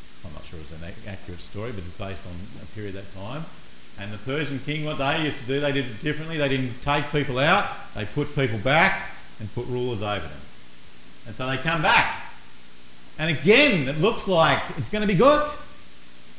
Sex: male